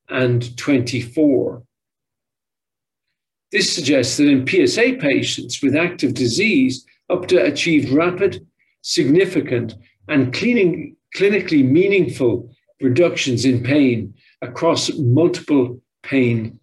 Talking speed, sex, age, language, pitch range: 85 wpm, male, 50-69, English, 125-180 Hz